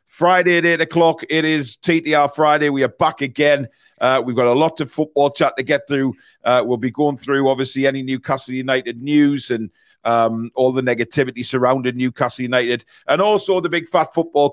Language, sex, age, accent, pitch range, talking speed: English, male, 40-59, British, 125-150 Hz, 195 wpm